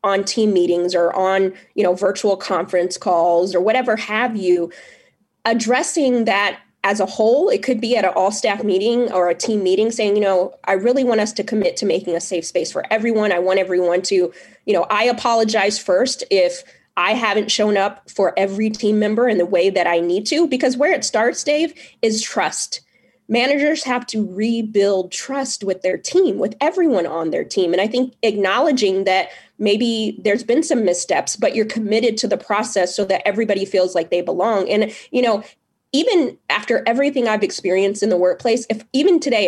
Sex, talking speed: female, 195 wpm